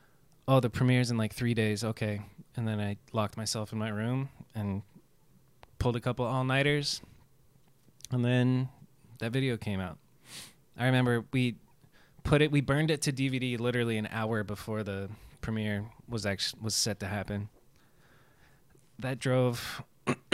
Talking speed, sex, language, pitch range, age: 160 wpm, male, English, 110-135 Hz, 20-39